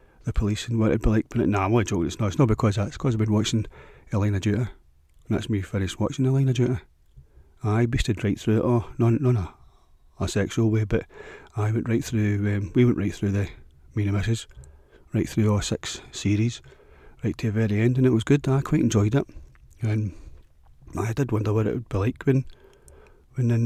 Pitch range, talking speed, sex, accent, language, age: 100-115 Hz, 215 wpm, male, British, English, 40-59